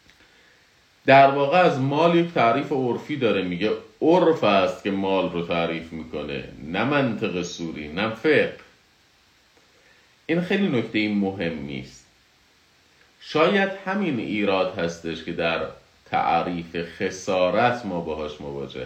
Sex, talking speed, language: male, 120 wpm, Persian